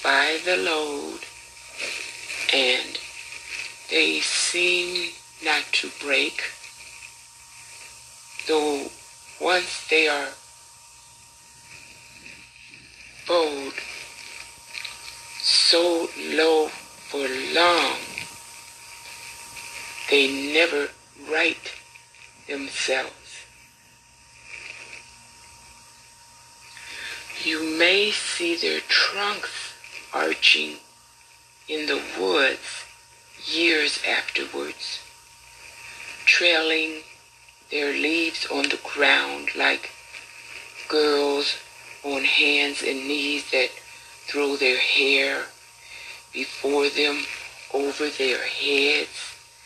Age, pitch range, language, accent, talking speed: 60-79, 135-160 Hz, English, American, 65 wpm